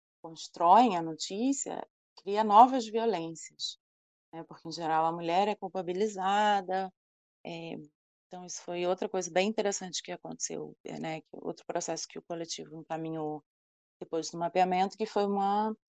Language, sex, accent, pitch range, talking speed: Portuguese, female, Brazilian, 165-200 Hz, 140 wpm